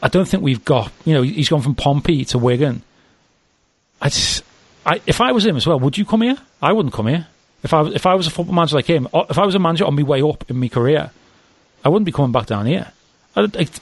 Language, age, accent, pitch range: English, 40-59, British, 120-160 Hz